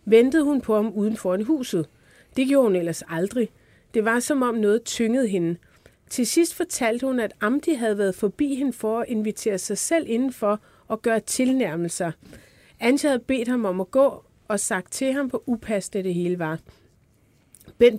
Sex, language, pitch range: female, Danish, 185-240 Hz